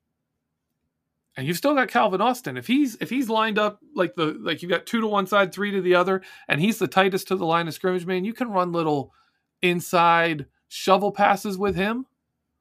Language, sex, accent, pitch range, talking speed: English, male, American, 135-200 Hz, 210 wpm